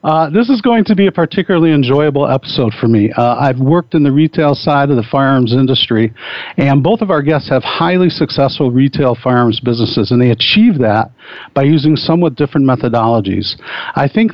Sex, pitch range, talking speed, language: male, 125-155 Hz, 190 wpm, English